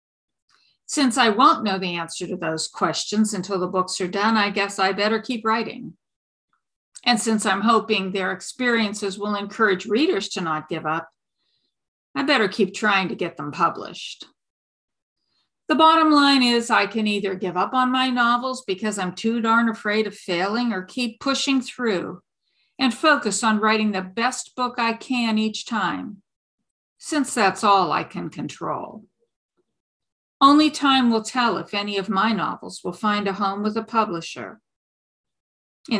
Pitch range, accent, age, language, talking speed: 195-260 Hz, American, 50-69, English, 165 wpm